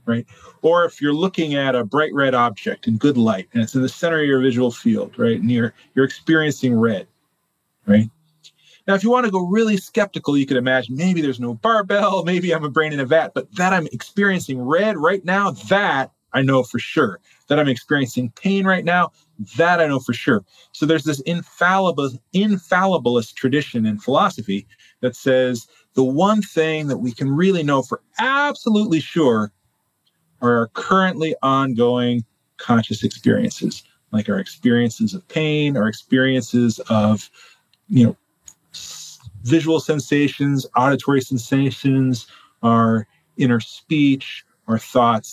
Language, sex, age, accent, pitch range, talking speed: English, male, 30-49, American, 120-170 Hz, 160 wpm